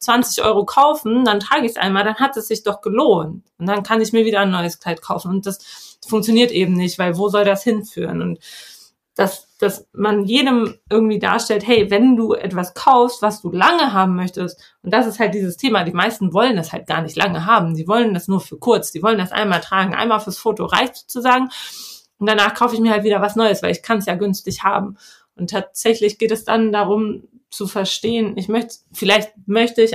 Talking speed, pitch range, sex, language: 220 wpm, 190-220 Hz, female, German